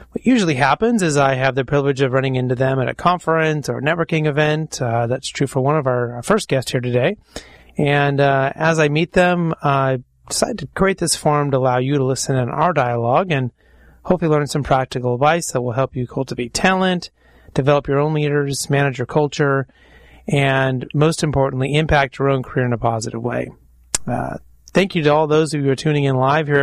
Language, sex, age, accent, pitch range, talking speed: English, male, 30-49, American, 130-155 Hz, 215 wpm